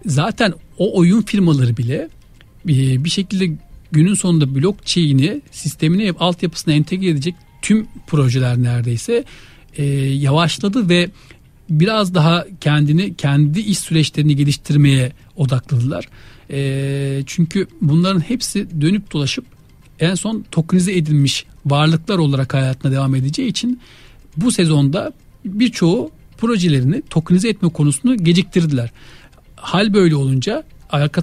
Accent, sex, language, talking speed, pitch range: native, male, Turkish, 105 wpm, 140-175 Hz